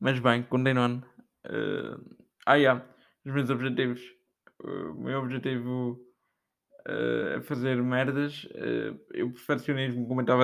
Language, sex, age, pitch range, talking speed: Portuguese, male, 20-39, 130-145 Hz, 140 wpm